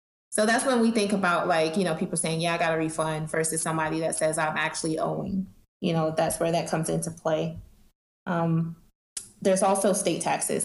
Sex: female